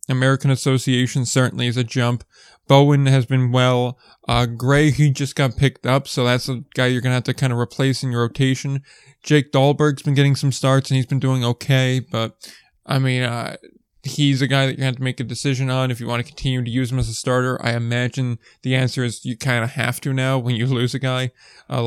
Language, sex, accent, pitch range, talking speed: English, male, American, 125-140 Hz, 235 wpm